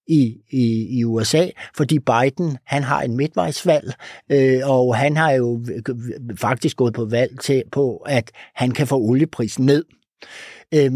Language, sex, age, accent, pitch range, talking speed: Danish, male, 60-79, native, 120-145 Hz, 150 wpm